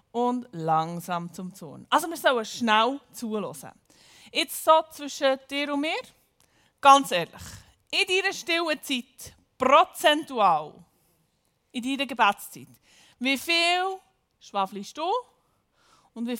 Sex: female